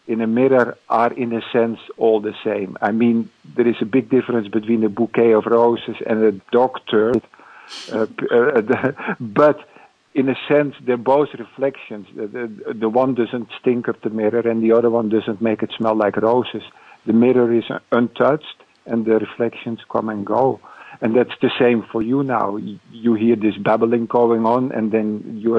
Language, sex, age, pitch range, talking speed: English, male, 50-69, 110-125 Hz, 185 wpm